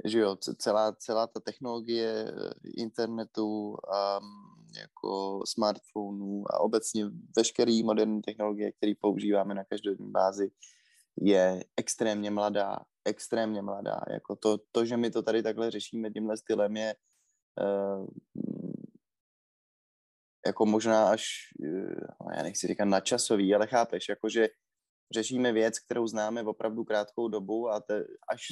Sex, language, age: male, Czech, 20-39